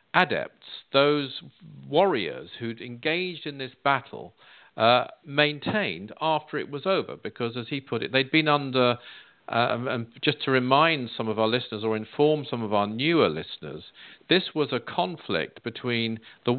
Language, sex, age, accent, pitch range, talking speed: English, male, 50-69, British, 120-155 Hz, 160 wpm